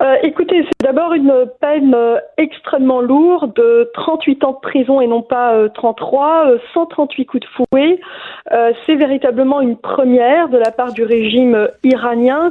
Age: 40-59